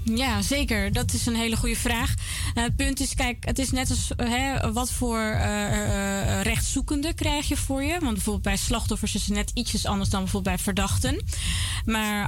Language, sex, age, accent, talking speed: Dutch, female, 20-39, Dutch, 190 wpm